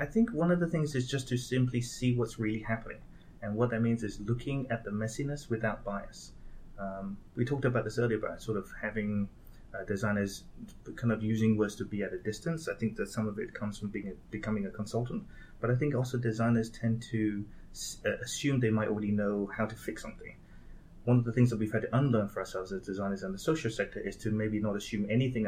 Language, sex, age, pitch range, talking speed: English, male, 30-49, 105-125 Hz, 235 wpm